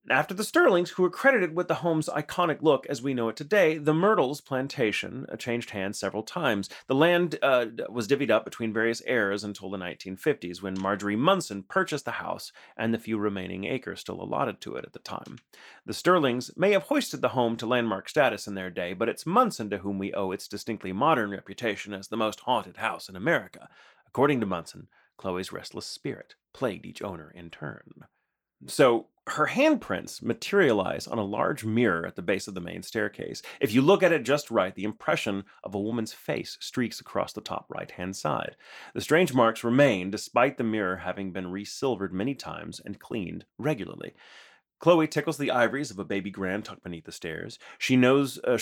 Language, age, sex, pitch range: English, 30-49, male, 100-150 Hz